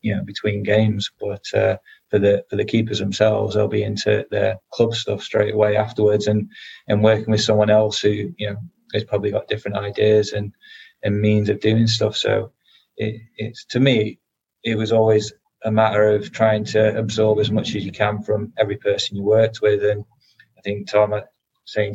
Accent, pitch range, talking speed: British, 105-110 Hz, 200 wpm